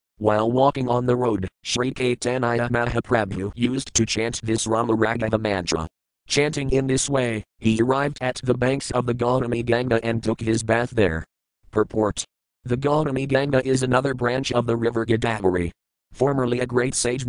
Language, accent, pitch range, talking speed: English, American, 110-125 Hz, 165 wpm